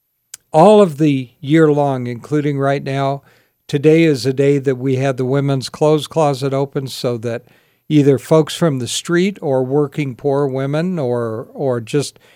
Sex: male